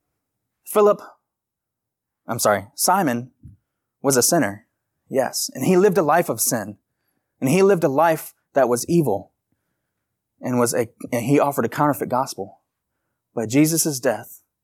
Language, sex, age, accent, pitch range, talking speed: English, male, 20-39, American, 120-160 Hz, 145 wpm